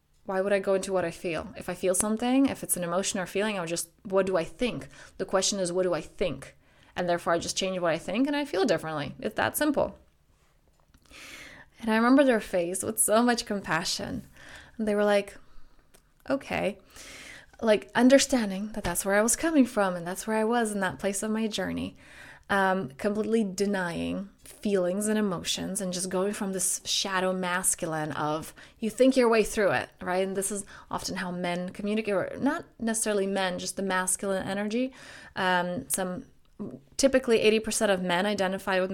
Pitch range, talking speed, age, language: 185-220 Hz, 195 wpm, 20-39, English